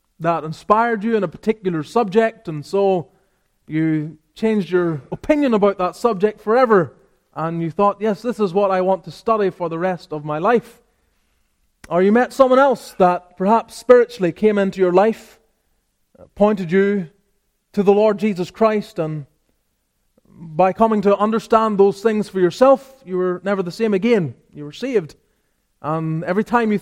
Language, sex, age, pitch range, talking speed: English, male, 20-39, 170-215 Hz, 170 wpm